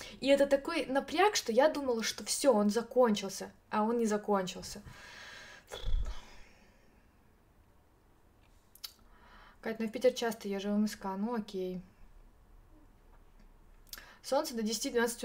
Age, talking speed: 20-39, 115 wpm